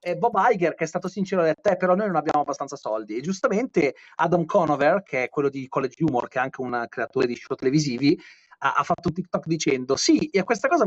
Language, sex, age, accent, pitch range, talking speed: Italian, male, 30-49, native, 155-205 Hz, 245 wpm